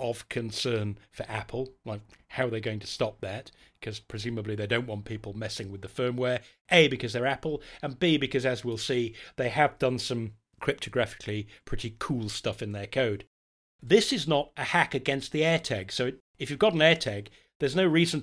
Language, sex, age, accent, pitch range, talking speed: English, male, 40-59, British, 110-140 Hz, 200 wpm